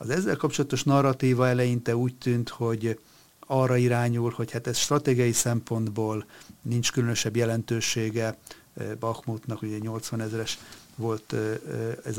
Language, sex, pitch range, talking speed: Hungarian, male, 110-125 Hz, 120 wpm